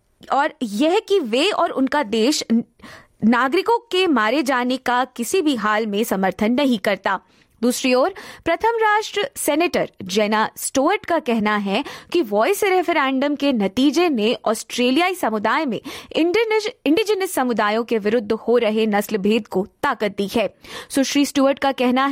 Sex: female